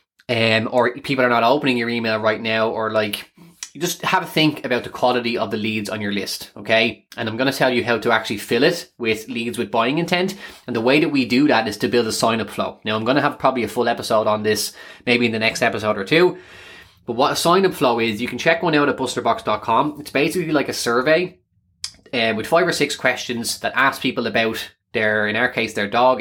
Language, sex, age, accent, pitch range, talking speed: English, male, 20-39, Irish, 110-135 Hz, 245 wpm